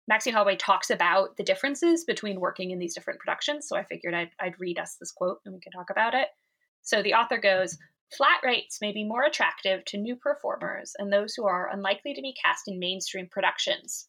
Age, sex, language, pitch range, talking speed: 20-39, female, English, 190-265 Hz, 215 wpm